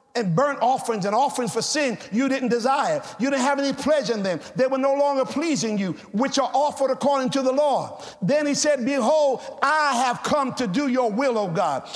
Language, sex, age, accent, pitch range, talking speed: English, male, 50-69, American, 250-310 Hz, 215 wpm